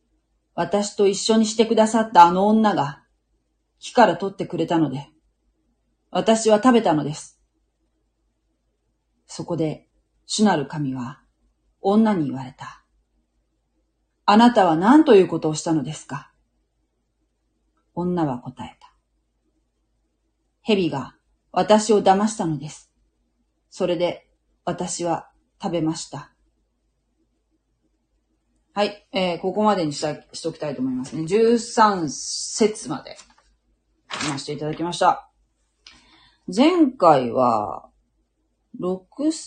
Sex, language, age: female, Japanese, 40-59